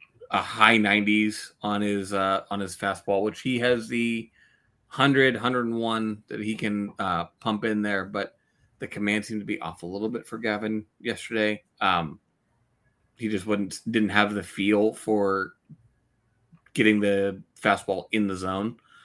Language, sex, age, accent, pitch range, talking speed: English, male, 20-39, American, 100-110 Hz, 160 wpm